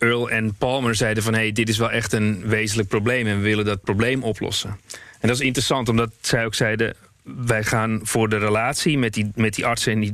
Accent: Dutch